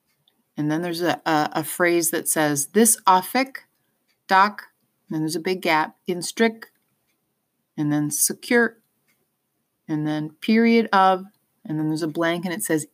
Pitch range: 165-220 Hz